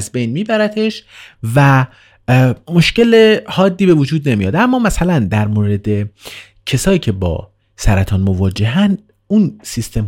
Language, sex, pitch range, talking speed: Persian, male, 100-135 Hz, 120 wpm